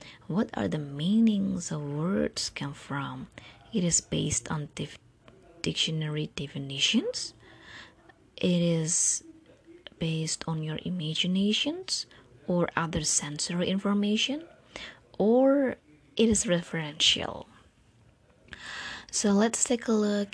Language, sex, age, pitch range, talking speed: English, female, 20-39, 160-200 Hz, 95 wpm